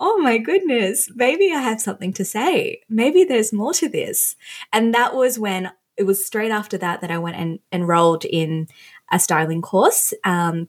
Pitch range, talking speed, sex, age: 175-225 Hz, 185 wpm, female, 20-39